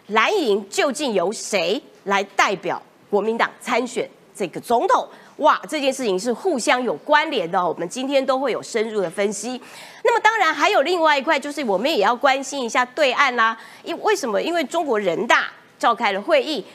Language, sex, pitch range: Chinese, female, 225-335 Hz